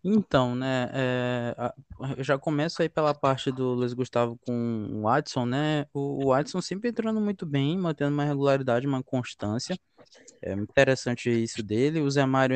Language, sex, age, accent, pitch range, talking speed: Portuguese, male, 20-39, Brazilian, 120-155 Hz, 160 wpm